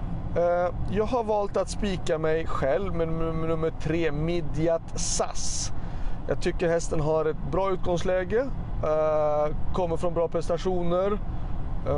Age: 30-49